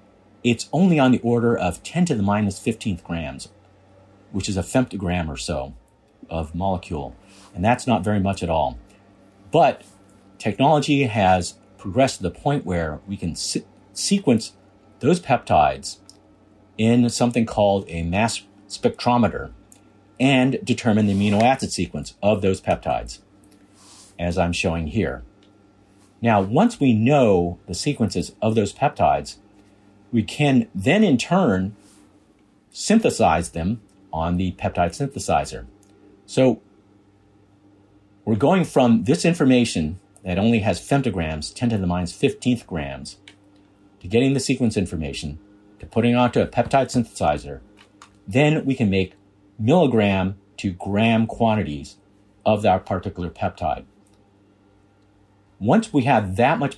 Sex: male